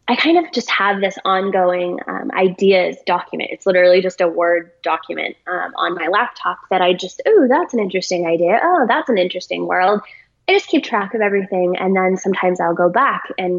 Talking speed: 205 wpm